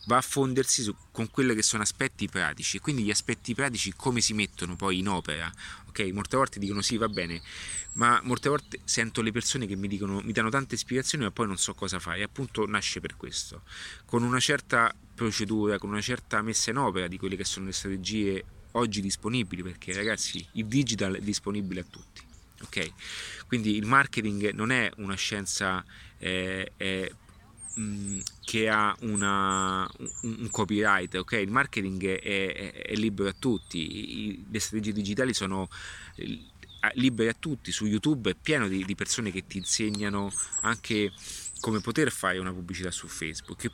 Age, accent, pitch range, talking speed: 30-49, native, 95-115 Hz, 170 wpm